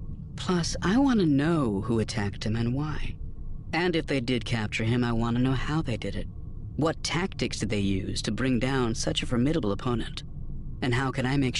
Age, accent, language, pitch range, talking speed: 40-59, American, English, 100-140 Hz, 210 wpm